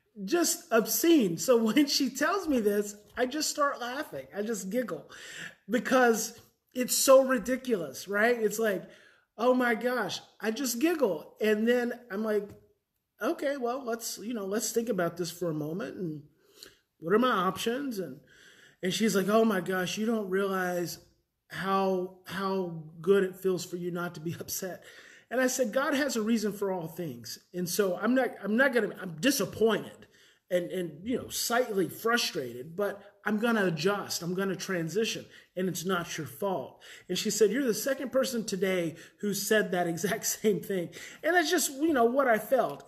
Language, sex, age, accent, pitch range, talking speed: English, male, 30-49, American, 185-240 Hz, 180 wpm